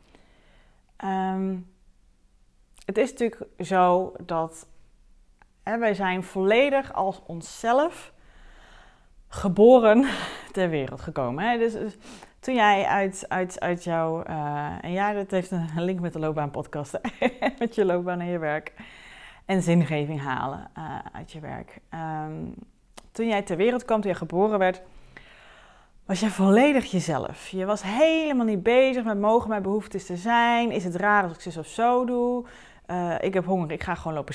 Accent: Dutch